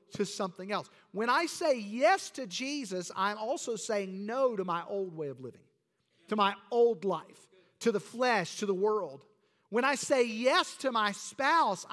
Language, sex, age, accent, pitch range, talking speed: English, male, 50-69, American, 175-250 Hz, 180 wpm